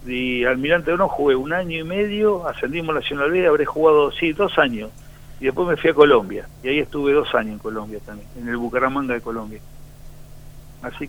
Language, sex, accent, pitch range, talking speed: Spanish, male, Argentinian, 120-150 Hz, 200 wpm